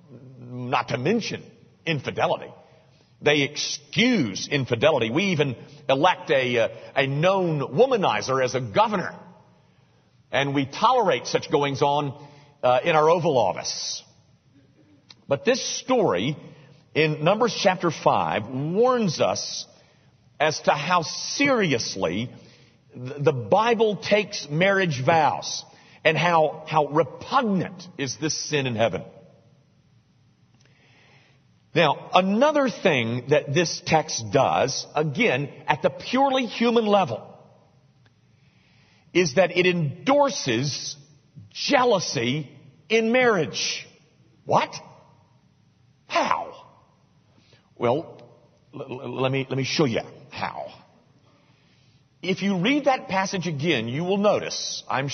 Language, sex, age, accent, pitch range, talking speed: English, male, 50-69, American, 135-190 Hz, 100 wpm